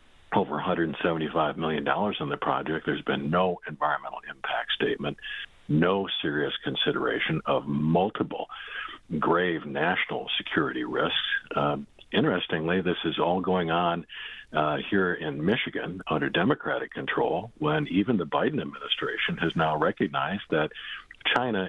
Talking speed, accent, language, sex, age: 125 wpm, American, English, male, 50-69